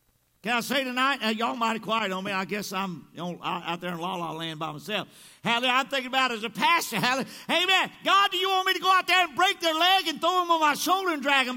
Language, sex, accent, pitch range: English, male, American, 235-310 Hz